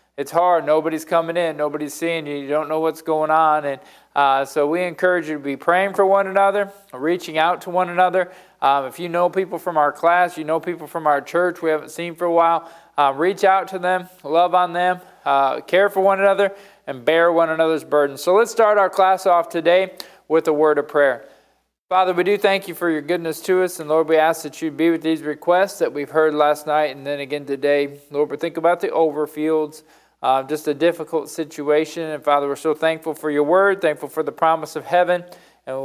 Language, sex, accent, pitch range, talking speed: English, male, American, 145-170 Hz, 230 wpm